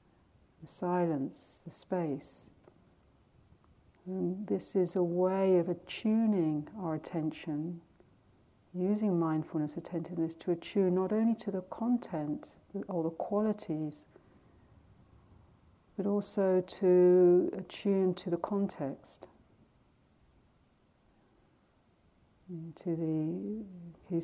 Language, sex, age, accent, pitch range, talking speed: English, female, 60-79, British, 165-185 Hz, 90 wpm